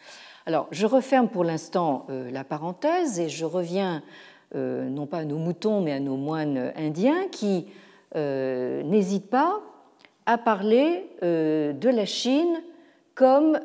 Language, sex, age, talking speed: French, female, 50-69, 145 wpm